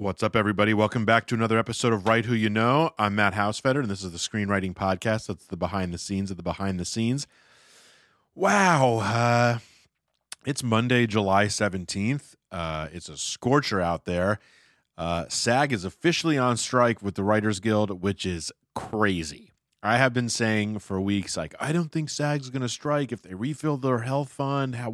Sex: male